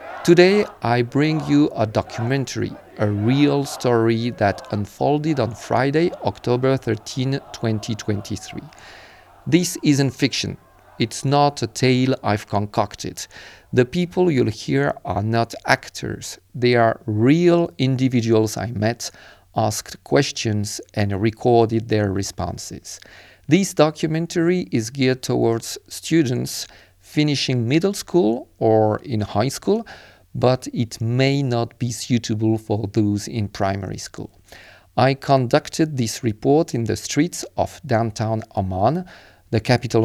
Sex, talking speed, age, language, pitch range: male, 120 wpm, 40-59, French, 105-140 Hz